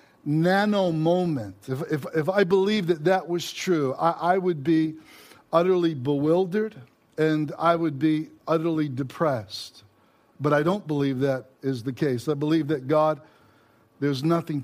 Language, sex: English, male